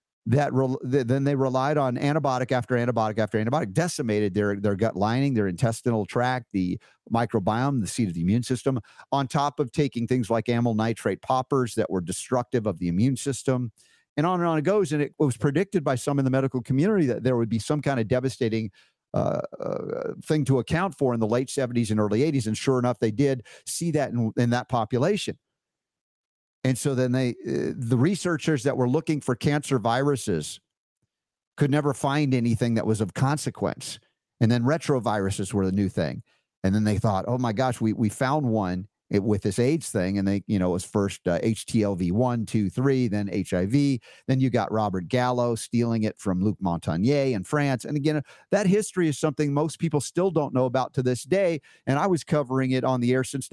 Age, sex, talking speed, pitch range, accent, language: 50-69, male, 205 wpm, 110-140 Hz, American, English